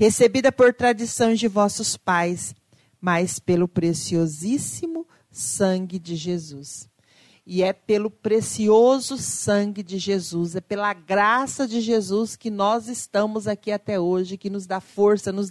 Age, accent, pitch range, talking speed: 40-59, Brazilian, 185-240 Hz, 135 wpm